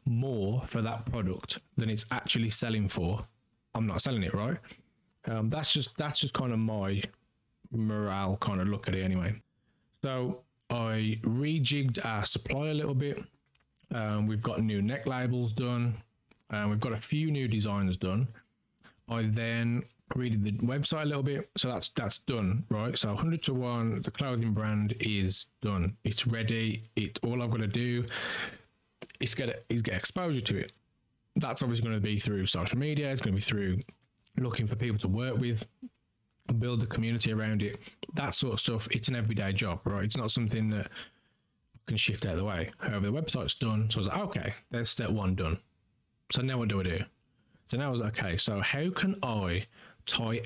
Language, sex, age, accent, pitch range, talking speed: English, male, 20-39, British, 105-125 Hz, 195 wpm